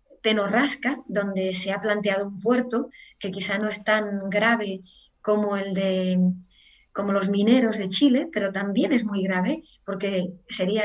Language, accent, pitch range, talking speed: Spanish, Spanish, 195-245 Hz, 150 wpm